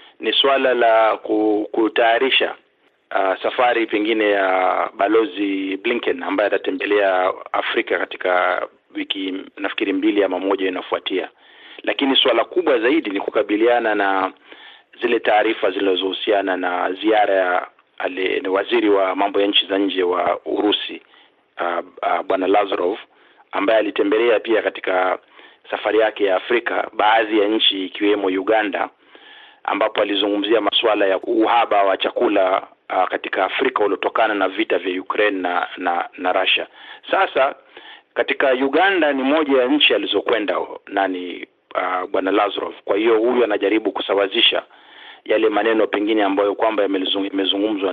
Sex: male